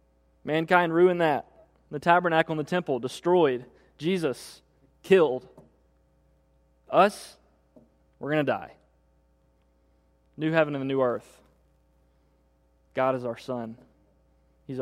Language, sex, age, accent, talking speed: English, male, 20-39, American, 105 wpm